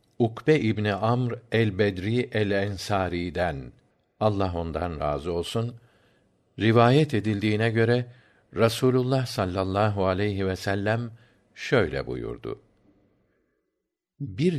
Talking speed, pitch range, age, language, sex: 80 wpm, 95-125 Hz, 50-69, Turkish, male